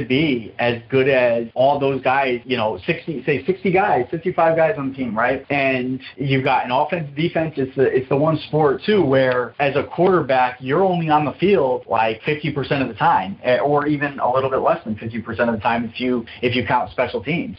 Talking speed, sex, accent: 220 wpm, male, American